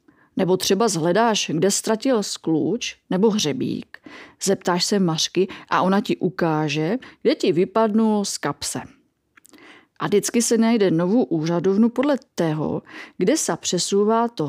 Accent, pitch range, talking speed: native, 175-240 Hz, 135 wpm